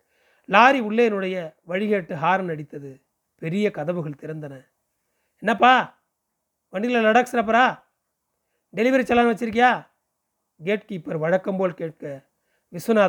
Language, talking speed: Tamil, 85 wpm